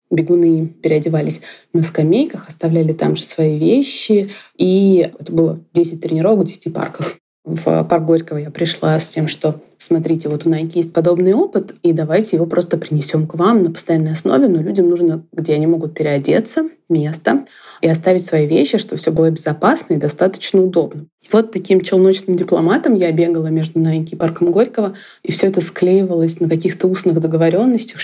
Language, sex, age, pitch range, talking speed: Russian, female, 20-39, 160-185 Hz, 170 wpm